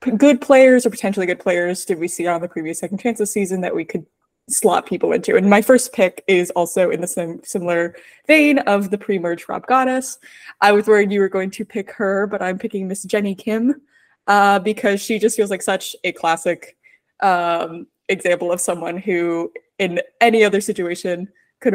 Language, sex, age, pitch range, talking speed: English, female, 20-39, 180-220 Hz, 195 wpm